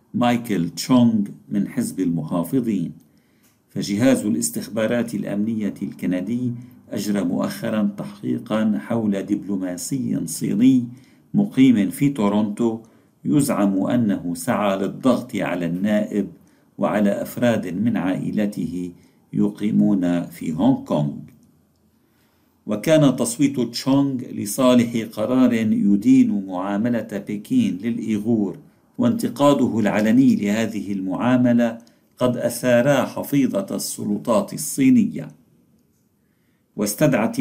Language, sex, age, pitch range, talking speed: Arabic, male, 50-69, 105-145 Hz, 80 wpm